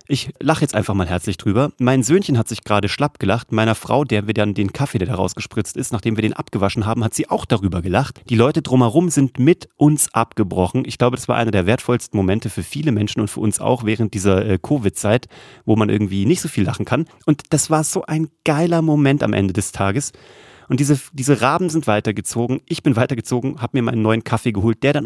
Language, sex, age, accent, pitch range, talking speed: German, male, 30-49, German, 110-150 Hz, 230 wpm